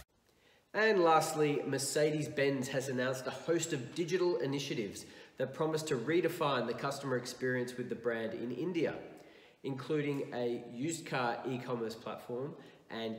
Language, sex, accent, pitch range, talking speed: English, male, Australian, 120-150 Hz, 130 wpm